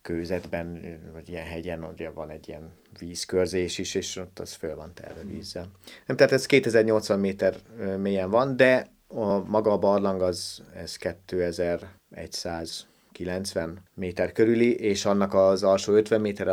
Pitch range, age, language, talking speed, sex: 85-100 Hz, 30-49, Hungarian, 145 wpm, male